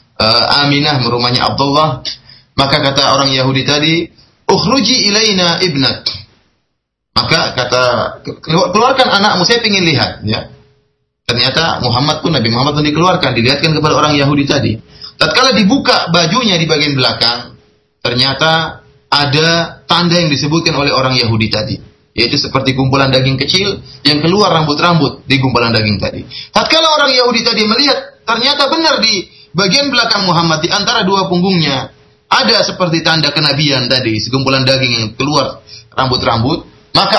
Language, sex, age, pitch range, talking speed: Malay, male, 30-49, 135-225 Hz, 135 wpm